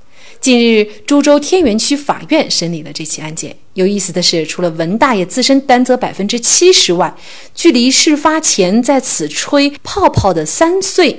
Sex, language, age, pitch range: female, Chinese, 30-49, 170-245 Hz